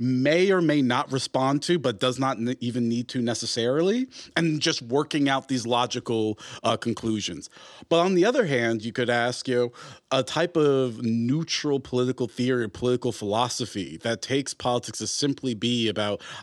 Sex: male